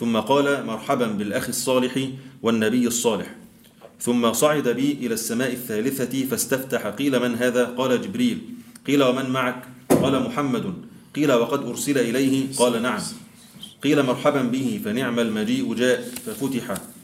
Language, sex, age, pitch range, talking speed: Arabic, male, 30-49, 125-150 Hz, 130 wpm